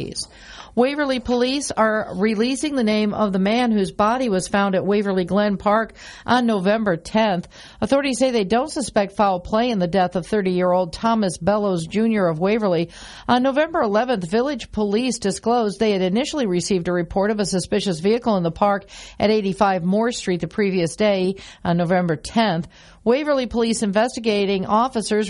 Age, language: 50-69, English